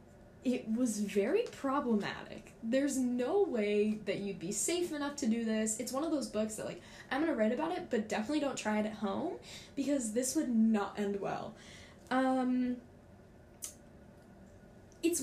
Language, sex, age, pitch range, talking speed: English, female, 10-29, 210-270 Hz, 165 wpm